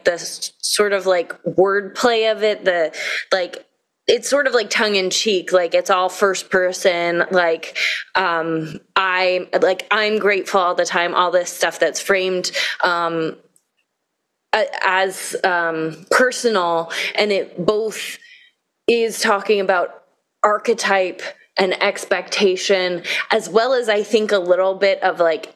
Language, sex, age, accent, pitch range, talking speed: English, female, 20-39, American, 180-205 Hz, 130 wpm